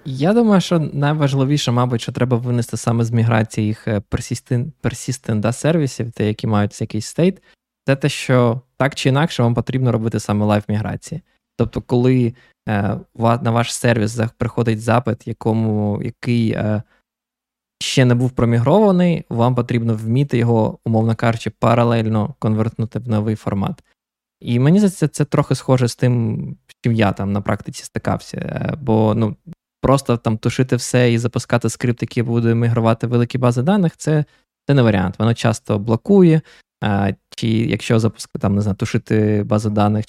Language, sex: Ukrainian, male